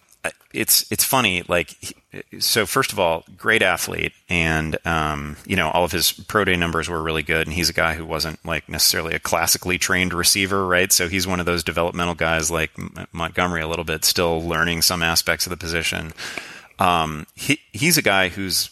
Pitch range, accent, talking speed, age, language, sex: 80-95 Hz, American, 195 wpm, 30-49, English, male